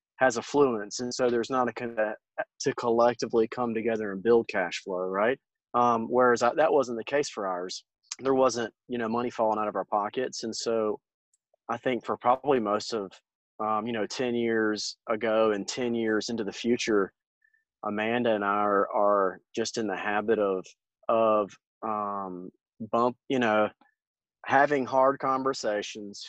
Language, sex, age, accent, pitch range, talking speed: English, male, 30-49, American, 105-125 Hz, 170 wpm